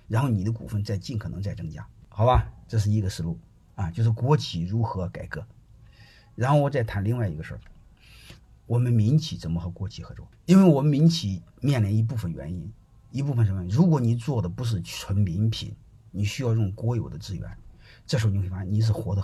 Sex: male